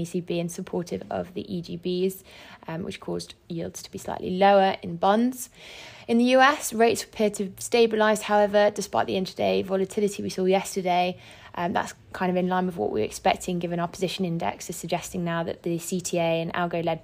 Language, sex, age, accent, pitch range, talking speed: English, female, 20-39, British, 170-200 Hz, 185 wpm